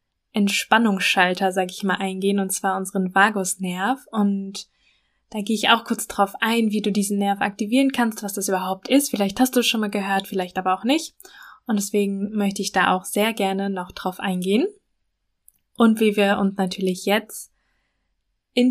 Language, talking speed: German, 180 wpm